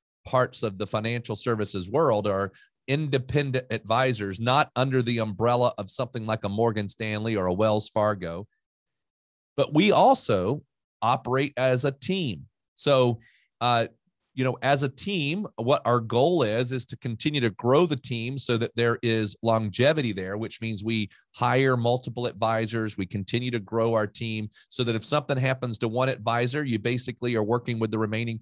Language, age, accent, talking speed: English, 40-59, American, 170 wpm